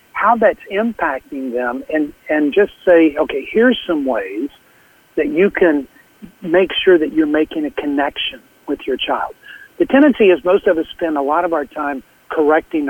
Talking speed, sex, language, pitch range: 175 wpm, male, English, 145-205 Hz